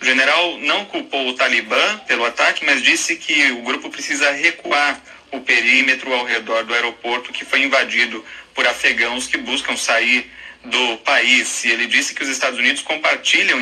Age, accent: 30-49, Brazilian